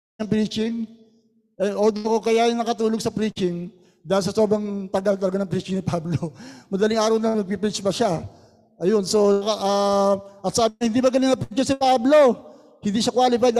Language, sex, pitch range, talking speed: Filipino, male, 190-225 Hz, 170 wpm